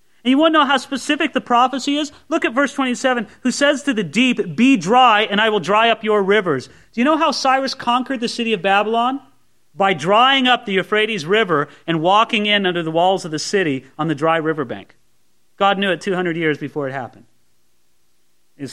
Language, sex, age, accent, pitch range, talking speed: English, male, 40-59, American, 180-260 Hz, 215 wpm